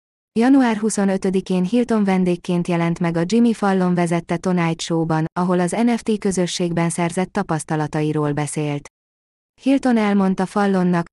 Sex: female